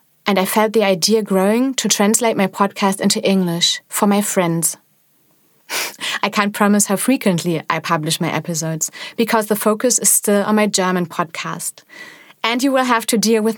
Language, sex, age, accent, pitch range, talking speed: English, female, 30-49, German, 190-235 Hz, 175 wpm